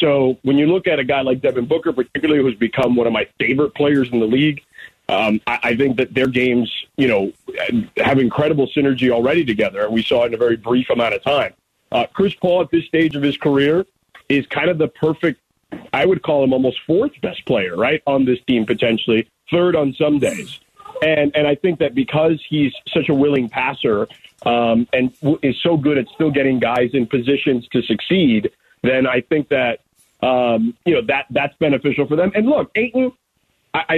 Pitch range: 120-155 Hz